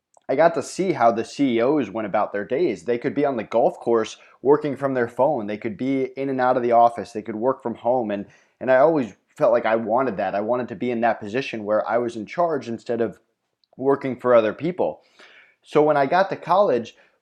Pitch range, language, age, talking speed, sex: 115-140 Hz, English, 20-39, 240 wpm, male